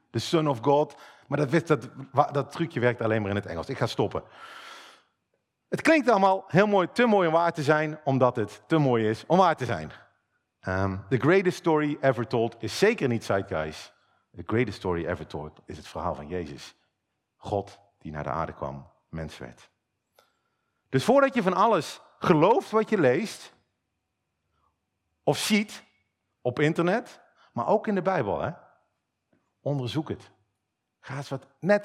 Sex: male